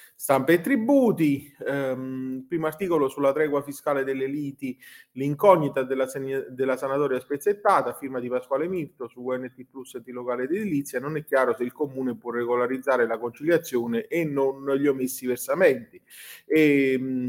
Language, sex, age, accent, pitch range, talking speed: Italian, male, 30-49, native, 125-155 Hz, 155 wpm